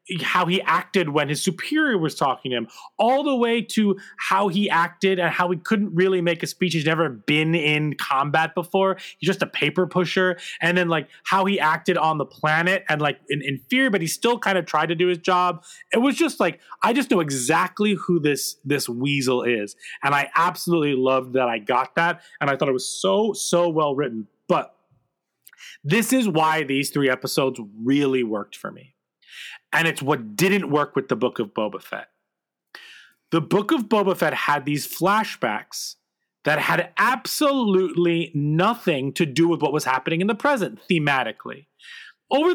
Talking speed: 190 wpm